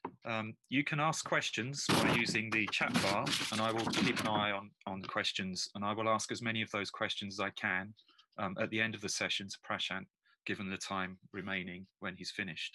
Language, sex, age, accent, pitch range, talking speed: English, male, 30-49, British, 100-120 Hz, 225 wpm